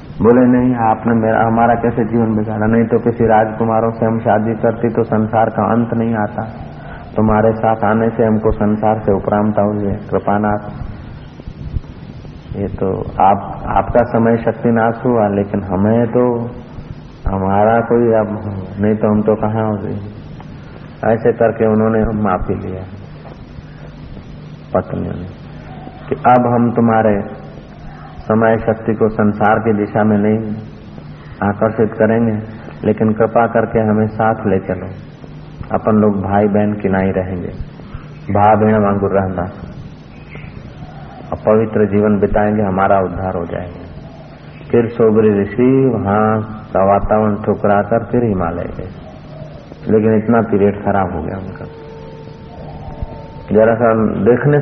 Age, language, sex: 50-69, Hindi, male